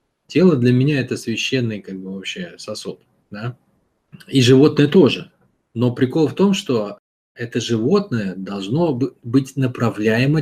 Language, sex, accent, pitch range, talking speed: Russian, male, native, 115-155 Hz, 130 wpm